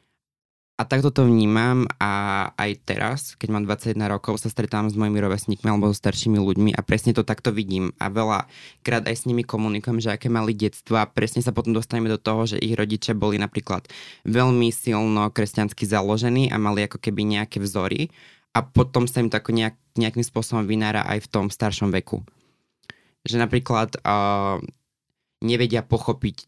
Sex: male